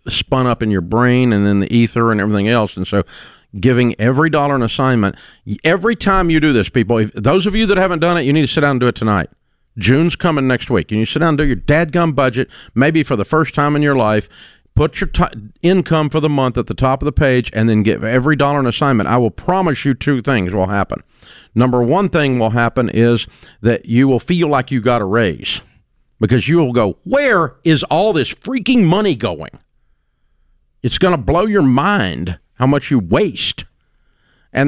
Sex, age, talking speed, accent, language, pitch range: male, 50-69, 220 wpm, American, English, 115-165 Hz